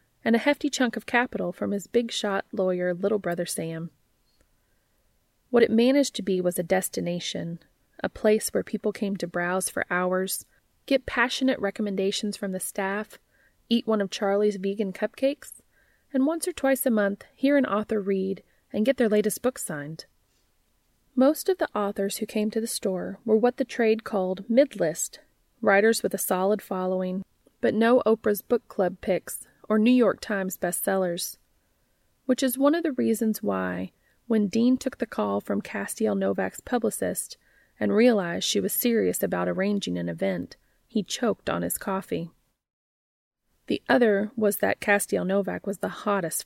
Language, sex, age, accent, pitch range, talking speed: English, female, 30-49, American, 185-230 Hz, 165 wpm